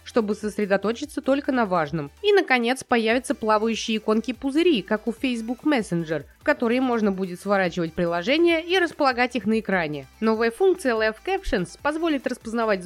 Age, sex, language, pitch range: 20-39, female, Russian, 215-295 Hz